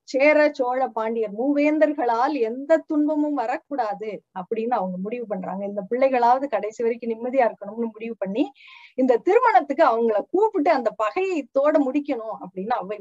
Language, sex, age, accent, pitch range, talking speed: Tamil, female, 20-39, native, 215-305 Hz, 130 wpm